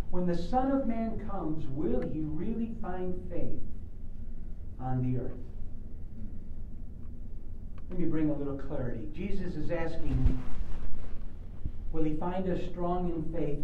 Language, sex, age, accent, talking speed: English, male, 60-79, American, 130 wpm